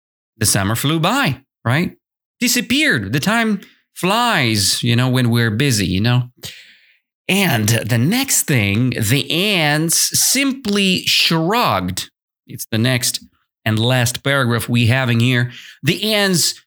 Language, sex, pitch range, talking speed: English, male, 115-175 Hz, 130 wpm